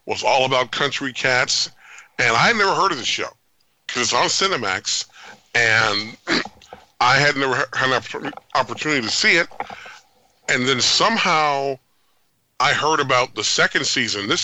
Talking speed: 160 wpm